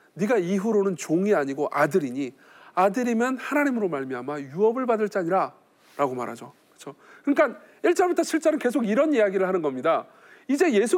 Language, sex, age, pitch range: Korean, male, 40-59, 200-285 Hz